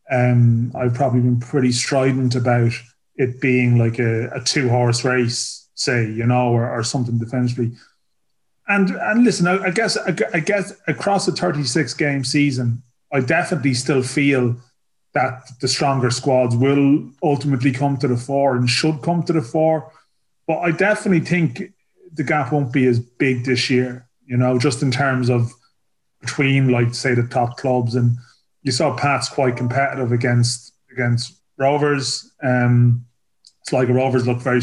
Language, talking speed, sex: English, 160 wpm, male